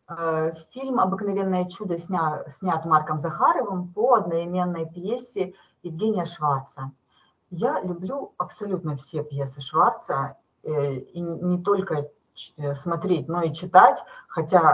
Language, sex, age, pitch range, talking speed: Russian, female, 40-59, 150-205 Hz, 100 wpm